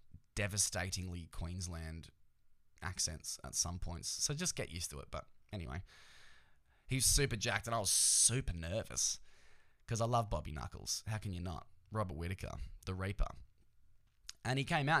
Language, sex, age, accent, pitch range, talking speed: English, male, 10-29, Australian, 95-115 Hz, 155 wpm